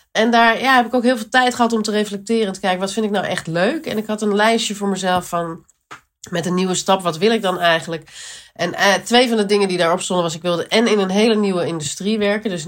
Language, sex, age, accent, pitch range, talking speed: English, female, 40-59, Dutch, 170-215 Hz, 280 wpm